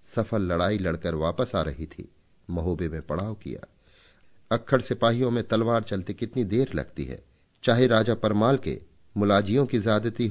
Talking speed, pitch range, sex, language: 155 wpm, 90-115 Hz, male, Hindi